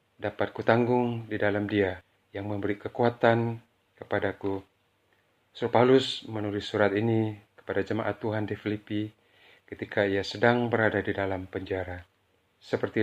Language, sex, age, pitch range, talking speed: Malay, male, 40-59, 100-120 Hz, 125 wpm